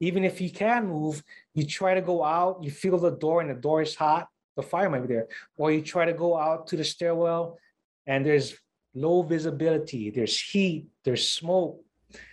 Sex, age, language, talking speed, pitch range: male, 30-49, English, 200 wpm, 145-180 Hz